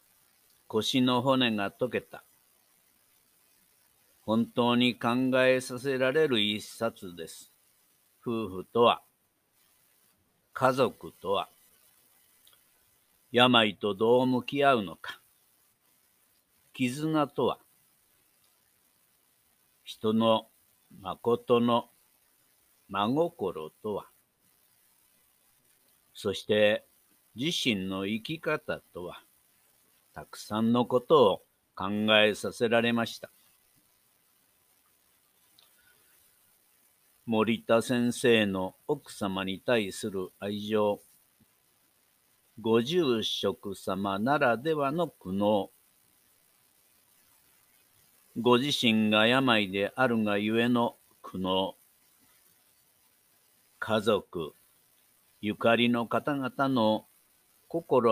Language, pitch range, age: Japanese, 105-125 Hz, 60-79